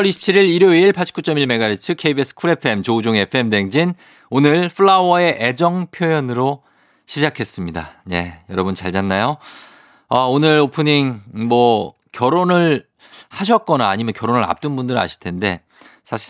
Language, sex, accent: Korean, male, native